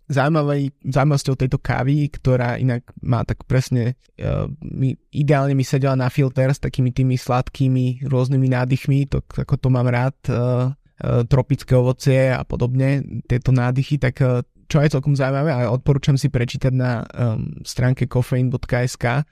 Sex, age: male, 20-39